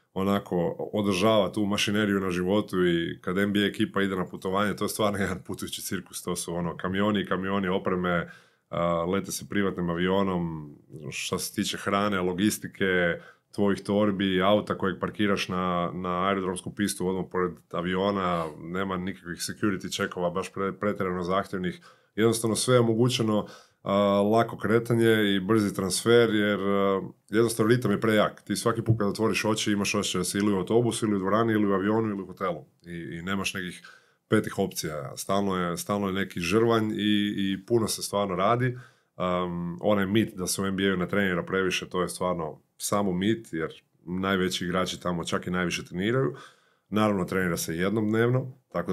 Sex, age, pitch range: male, 20-39, 90-105 Hz